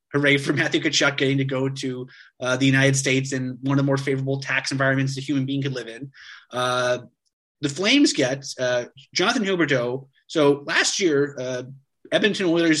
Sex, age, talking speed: male, 30-49, 185 wpm